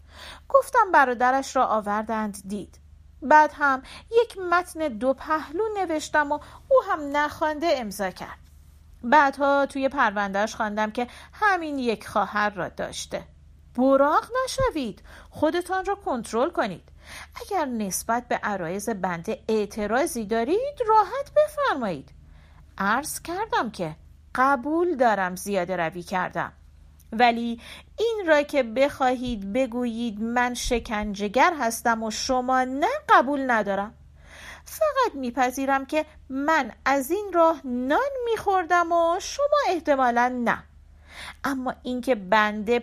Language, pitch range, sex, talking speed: Persian, 220-310 Hz, female, 115 wpm